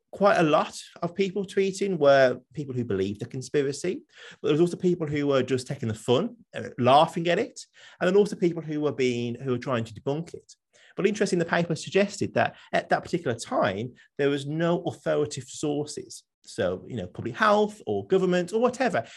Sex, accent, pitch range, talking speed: male, British, 120-175 Hz, 195 wpm